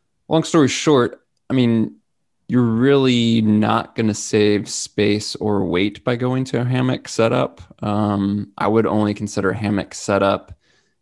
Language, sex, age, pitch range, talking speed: English, male, 20-39, 100-115 Hz, 150 wpm